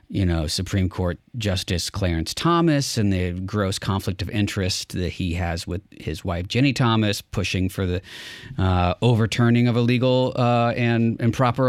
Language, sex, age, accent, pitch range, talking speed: English, male, 40-59, American, 95-120 Hz, 165 wpm